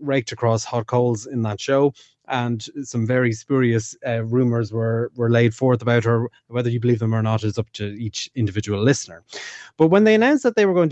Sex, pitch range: male, 115-140 Hz